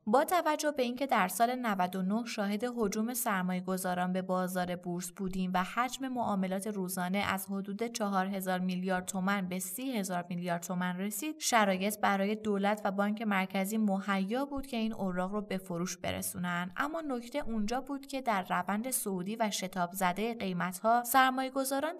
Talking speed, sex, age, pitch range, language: 155 wpm, female, 20-39, 185-240 Hz, Persian